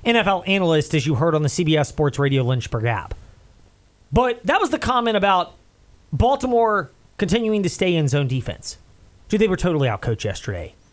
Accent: American